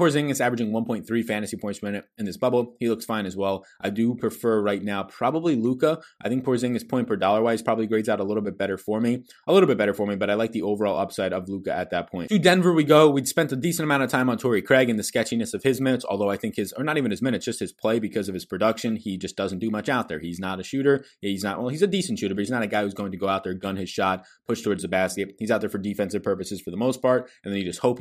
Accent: American